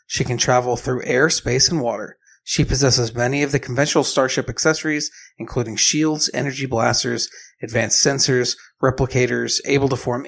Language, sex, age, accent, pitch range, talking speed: English, male, 40-59, American, 125-155 Hz, 150 wpm